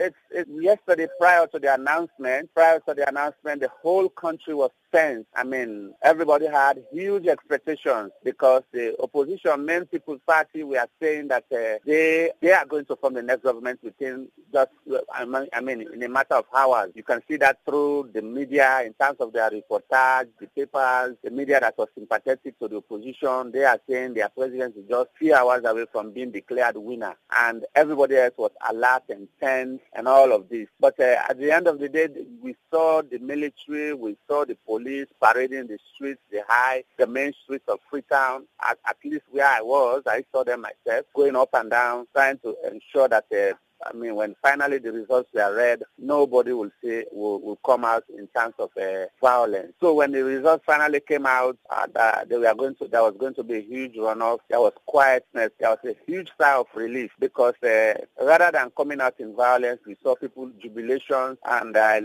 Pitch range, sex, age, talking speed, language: 120-150 Hz, male, 50-69, 200 wpm, English